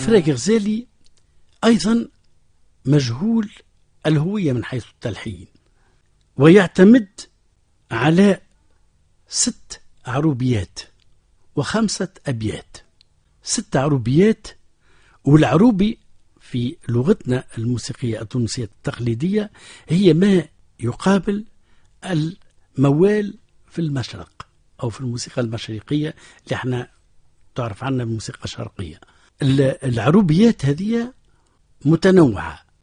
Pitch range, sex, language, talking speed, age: 110-175 Hz, male, Arabic, 75 wpm, 60-79